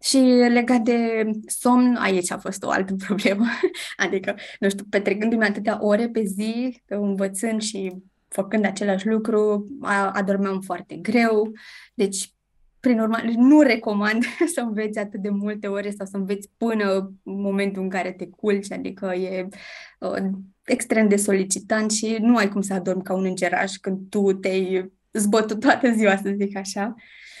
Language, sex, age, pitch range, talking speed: Romanian, female, 20-39, 195-235 Hz, 155 wpm